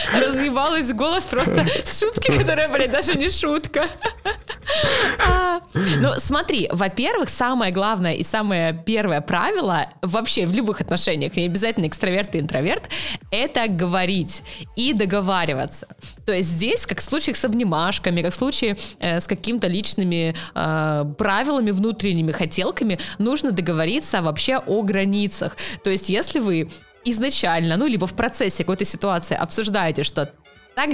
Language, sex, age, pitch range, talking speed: Russian, female, 20-39, 170-225 Hz, 130 wpm